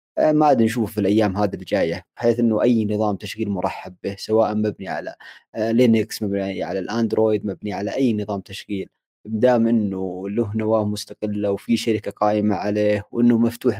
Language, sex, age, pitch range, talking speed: Arabic, male, 20-39, 105-120 Hz, 165 wpm